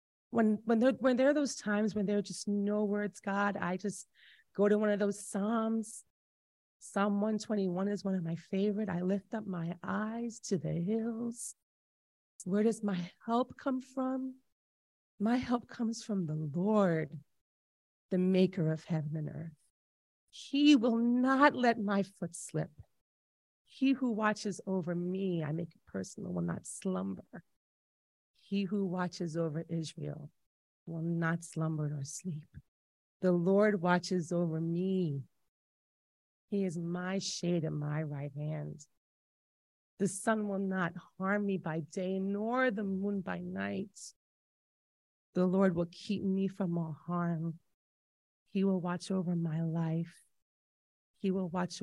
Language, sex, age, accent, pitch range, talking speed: English, female, 30-49, American, 165-205 Hz, 150 wpm